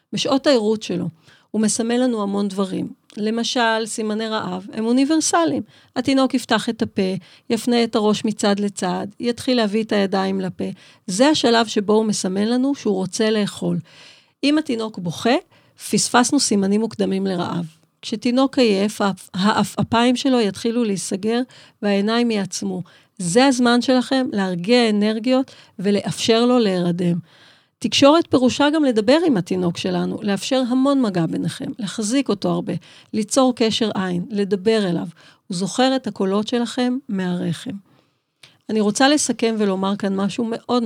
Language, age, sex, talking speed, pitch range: Hebrew, 40-59, female, 135 wpm, 190-245 Hz